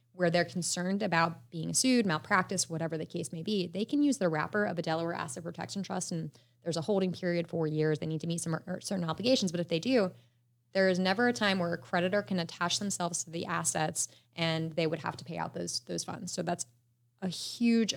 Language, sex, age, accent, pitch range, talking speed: English, female, 20-39, American, 160-185 Hz, 230 wpm